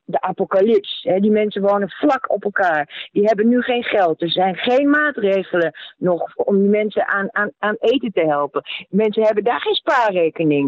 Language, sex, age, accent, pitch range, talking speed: Dutch, female, 40-59, Dutch, 180-240 Hz, 185 wpm